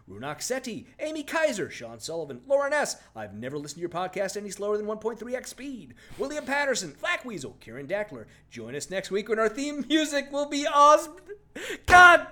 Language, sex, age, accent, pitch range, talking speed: English, male, 50-69, American, 200-320 Hz, 175 wpm